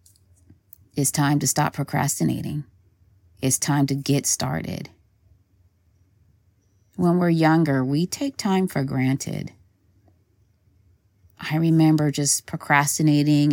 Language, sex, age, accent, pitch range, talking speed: English, female, 30-49, American, 100-160 Hz, 100 wpm